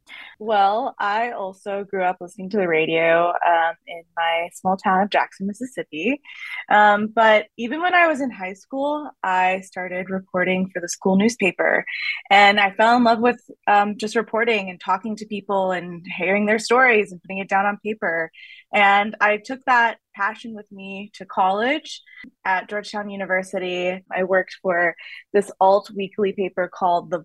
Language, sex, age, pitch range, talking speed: English, female, 20-39, 185-235 Hz, 165 wpm